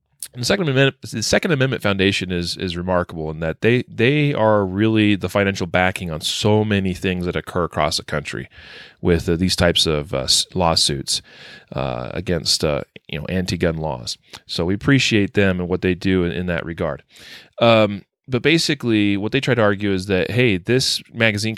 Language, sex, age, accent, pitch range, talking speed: English, male, 30-49, American, 90-110 Hz, 190 wpm